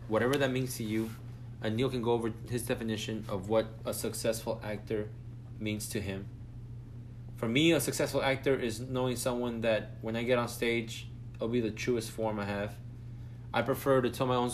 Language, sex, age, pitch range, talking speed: English, male, 20-39, 105-120 Hz, 195 wpm